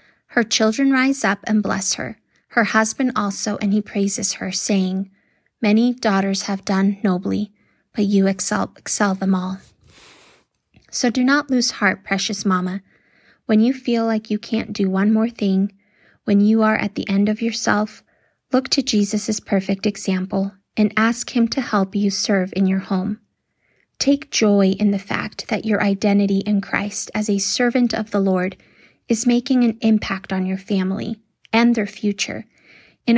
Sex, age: female, 20-39